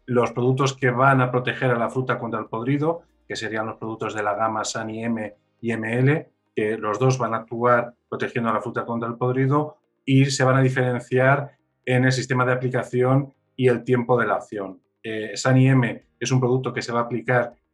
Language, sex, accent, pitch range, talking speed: Spanish, male, Spanish, 115-135 Hz, 215 wpm